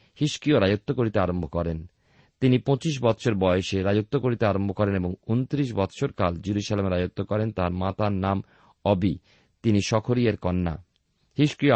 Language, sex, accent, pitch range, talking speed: Bengali, male, native, 95-125 Hz, 140 wpm